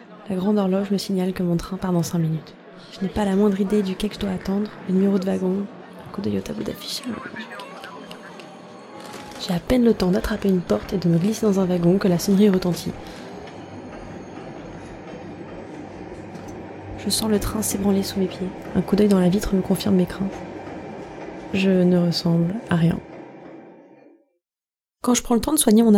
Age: 20-39